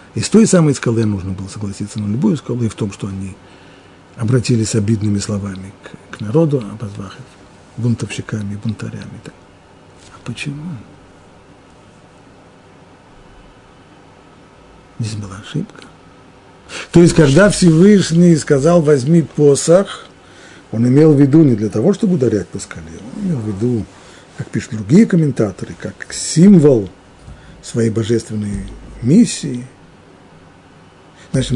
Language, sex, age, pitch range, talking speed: Russian, male, 50-69, 110-150 Hz, 115 wpm